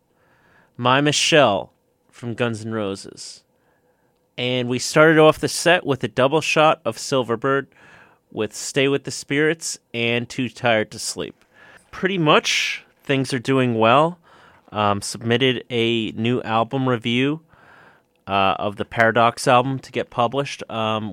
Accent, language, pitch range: American, English, 115-145 Hz